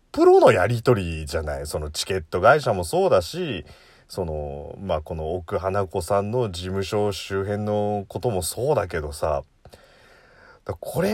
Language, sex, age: Japanese, male, 30-49